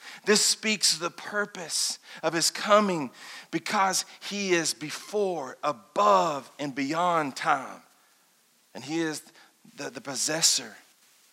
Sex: male